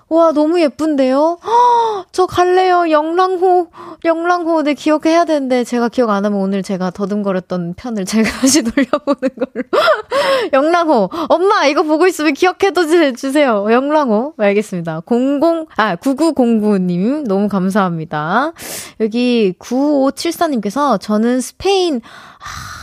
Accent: native